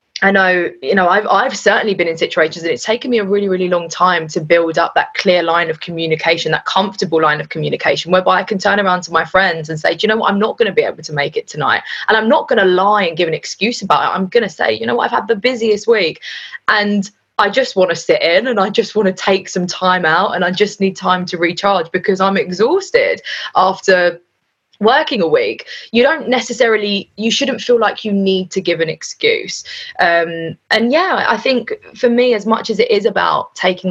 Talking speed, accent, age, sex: 240 wpm, British, 20-39, female